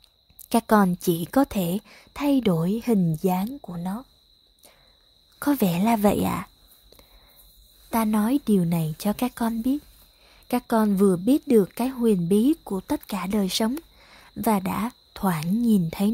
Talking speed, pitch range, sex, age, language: 155 wpm, 200-250 Hz, female, 20-39, Vietnamese